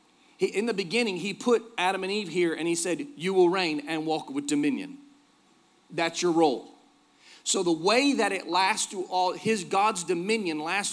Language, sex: English, male